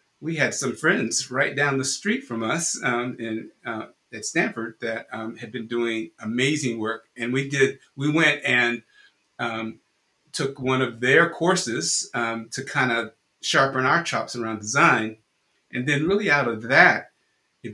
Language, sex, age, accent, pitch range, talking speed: English, male, 50-69, American, 110-135 Hz, 170 wpm